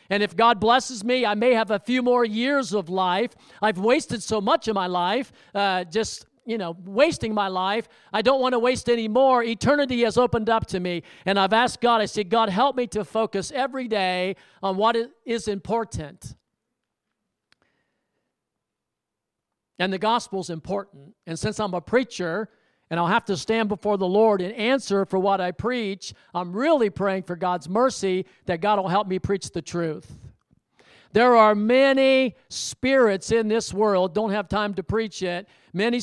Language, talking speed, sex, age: English, 185 wpm, male, 50-69